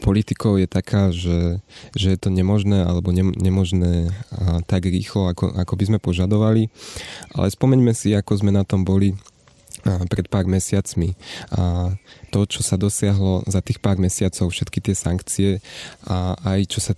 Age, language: 20-39, Slovak